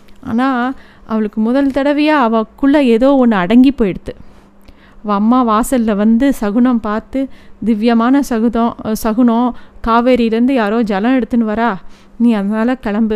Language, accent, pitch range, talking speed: Tamil, native, 215-255 Hz, 120 wpm